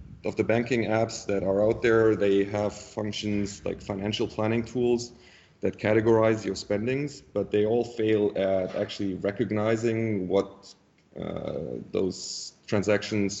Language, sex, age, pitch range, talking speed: English, male, 30-49, 95-110 Hz, 135 wpm